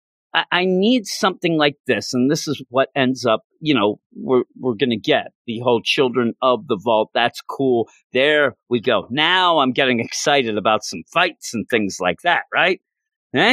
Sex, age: male, 40-59